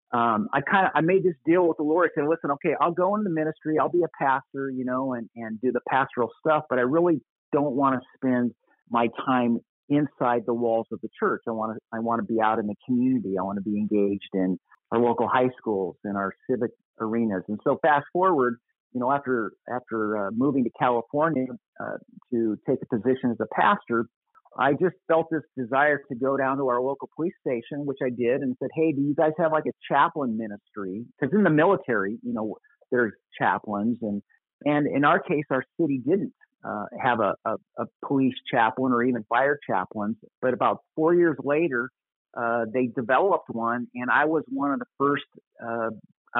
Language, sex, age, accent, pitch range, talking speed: English, male, 50-69, American, 115-150 Hz, 210 wpm